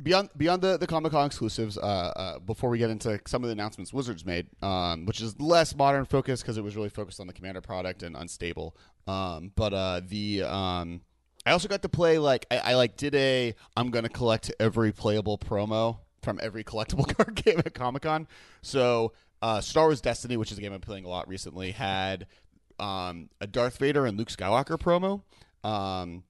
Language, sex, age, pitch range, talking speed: English, male, 30-49, 95-120 Hz, 210 wpm